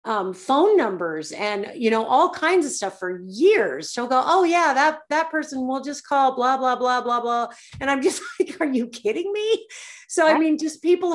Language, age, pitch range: English, 40-59, 195-260 Hz